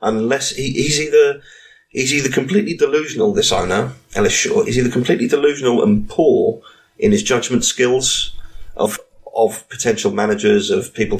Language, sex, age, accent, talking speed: English, male, 30-49, British, 150 wpm